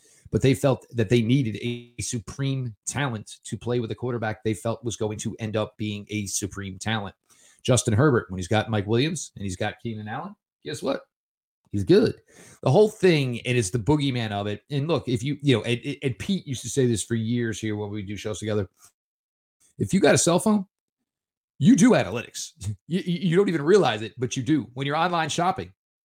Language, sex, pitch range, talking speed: English, male, 110-140 Hz, 215 wpm